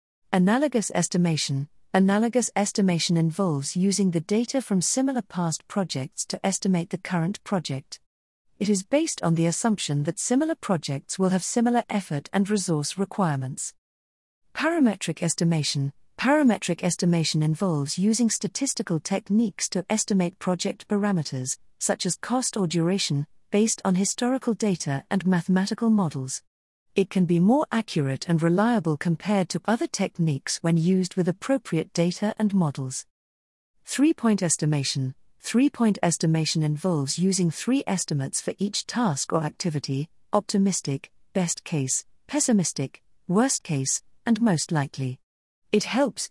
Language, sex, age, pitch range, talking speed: English, female, 50-69, 155-210 Hz, 130 wpm